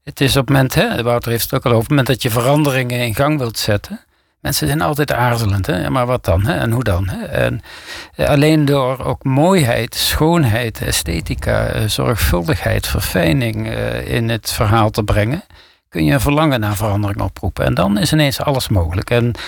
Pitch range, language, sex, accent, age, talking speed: 115-140 Hz, Dutch, male, Dutch, 60-79, 195 wpm